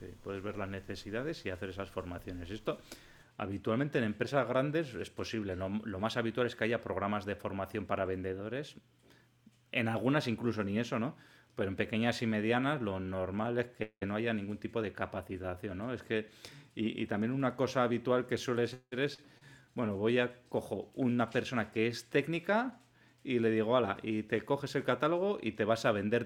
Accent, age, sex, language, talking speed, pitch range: Spanish, 30-49, male, Spanish, 195 wpm, 105-135 Hz